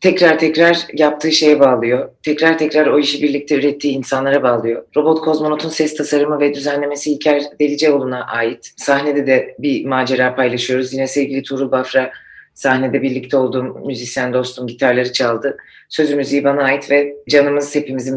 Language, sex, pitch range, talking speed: Turkish, female, 130-145 Hz, 150 wpm